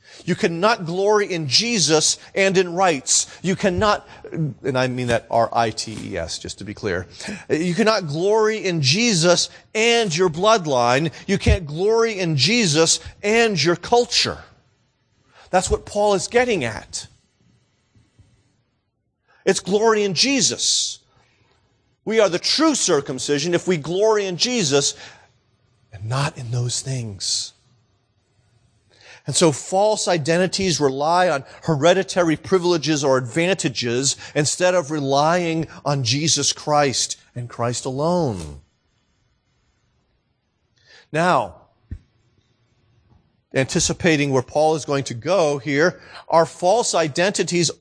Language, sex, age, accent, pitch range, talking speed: English, male, 40-59, American, 130-190 Hz, 115 wpm